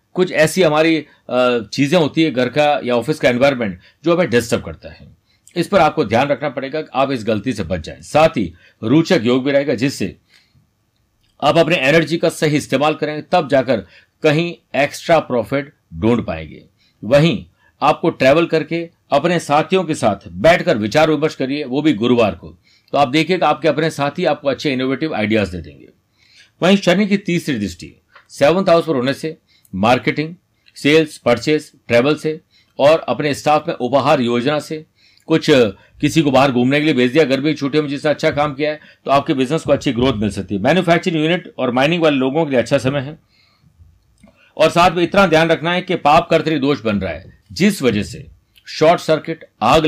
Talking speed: 190 wpm